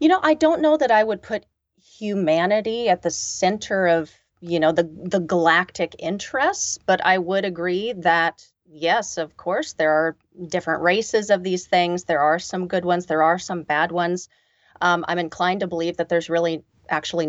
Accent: American